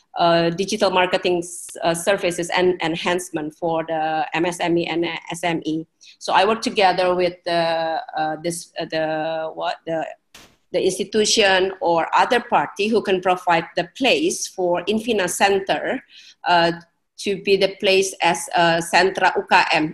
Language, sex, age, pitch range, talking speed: English, female, 30-49, 170-195 Hz, 140 wpm